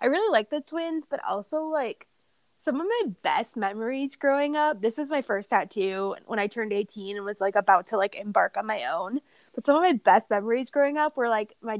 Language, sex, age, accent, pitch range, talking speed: English, female, 20-39, American, 205-260 Hz, 230 wpm